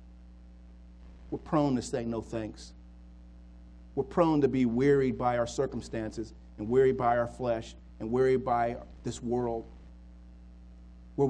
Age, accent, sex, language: 40-59, American, male, English